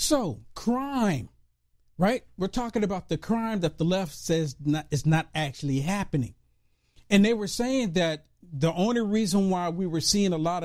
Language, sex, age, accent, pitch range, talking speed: English, male, 50-69, American, 150-205 Hz, 170 wpm